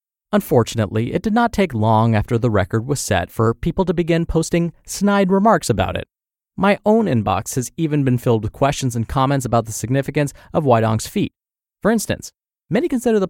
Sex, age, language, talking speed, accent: male, 30-49, English, 190 wpm, American